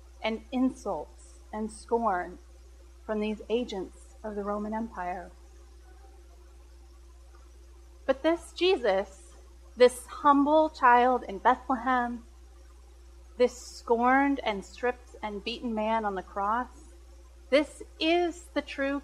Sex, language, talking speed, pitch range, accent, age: female, English, 105 wpm, 185-275 Hz, American, 30-49